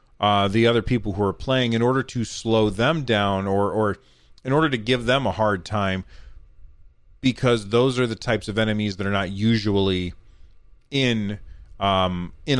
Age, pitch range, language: 30-49, 100-125 Hz, English